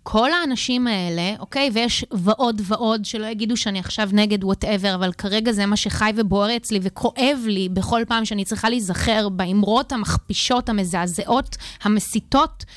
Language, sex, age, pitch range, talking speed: Hebrew, female, 30-49, 195-245 Hz, 145 wpm